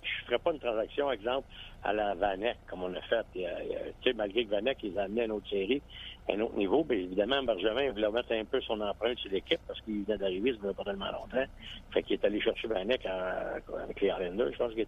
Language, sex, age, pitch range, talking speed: French, male, 60-79, 100-120 Hz, 265 wpm